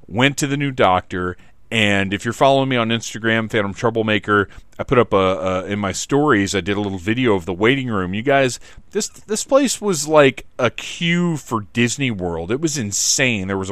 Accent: American